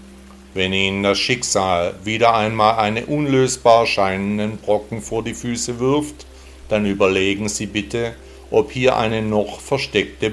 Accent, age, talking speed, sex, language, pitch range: German, 60-79, 135 wpm, male, German, 75-115 Hz